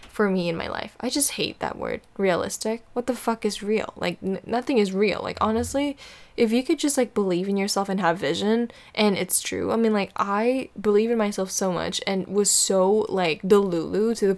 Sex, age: female, 10-29